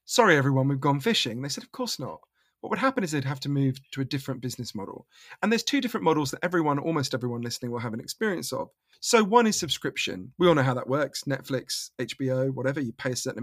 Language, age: English, 40-59